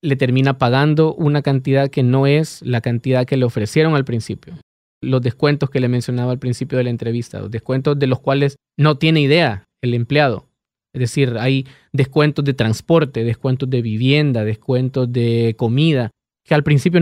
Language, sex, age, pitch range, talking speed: English, male, 20-39, 120-150 Hz, 175 wpm